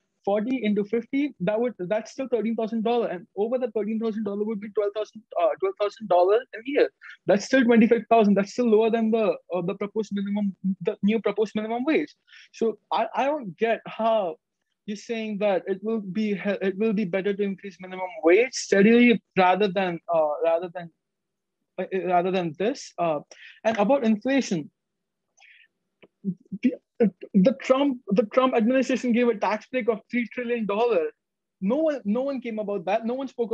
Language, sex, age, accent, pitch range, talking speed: English, male, 20-39, Indian, 195-240 Hz, 185 wpm